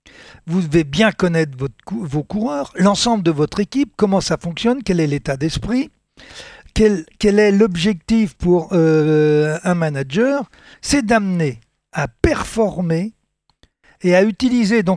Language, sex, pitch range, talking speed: French, male, 165-230 Hz, 130 wpm